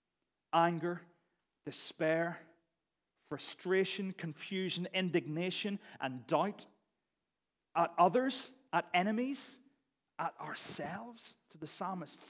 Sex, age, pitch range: male, 30-49, 135-190 Hz